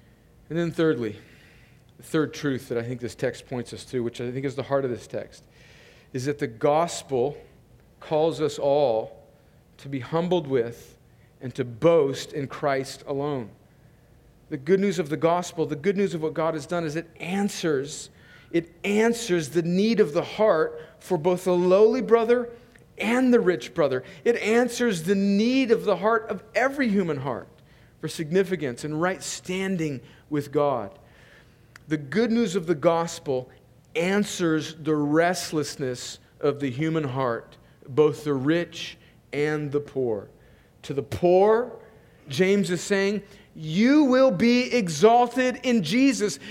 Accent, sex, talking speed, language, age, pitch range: American, male, 155 wpm, English, 40-59, 145-235 Hz